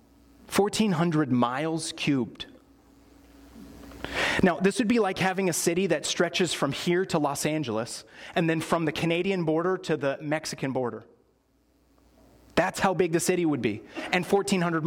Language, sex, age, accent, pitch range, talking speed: English, male, 30-49, American, 130-180 Hz, 150 wpm